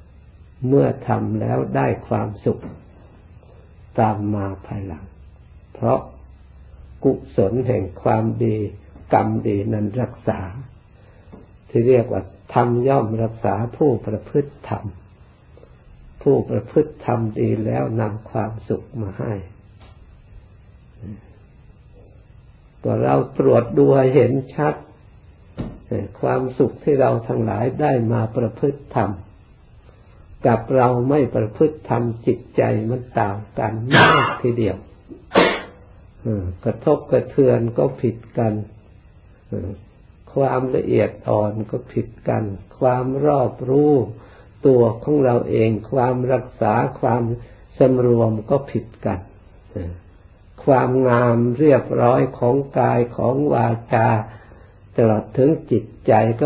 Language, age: Thai, 60-79